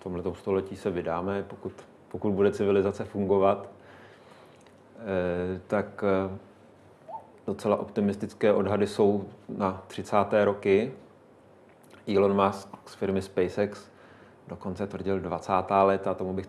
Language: Czech